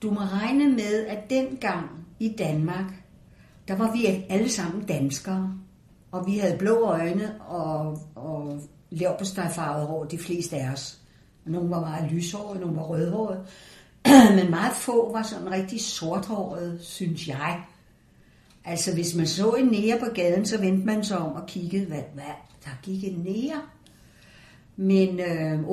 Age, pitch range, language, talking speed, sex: 60-79, 170-225 Hz, Danish, 155 wpm, female